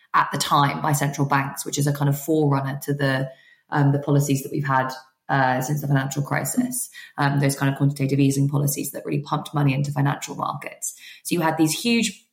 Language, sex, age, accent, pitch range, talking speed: English, female, 20-39, British, 145-170 Hz, 215 wpm